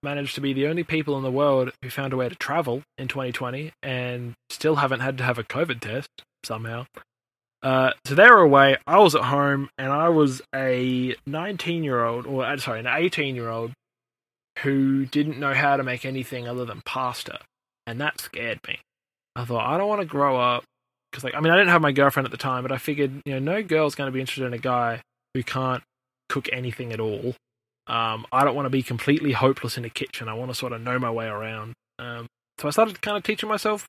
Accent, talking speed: Australian, 235 wpm